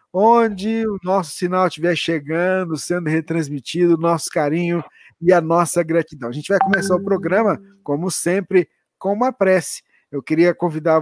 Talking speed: 160 wpm